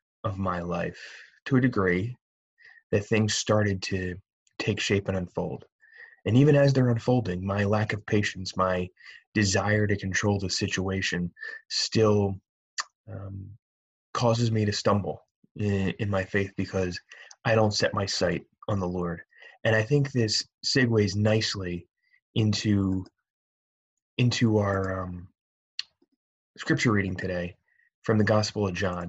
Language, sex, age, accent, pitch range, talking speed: English, male, 20-39, American, 95-115 Hz, 135 wpm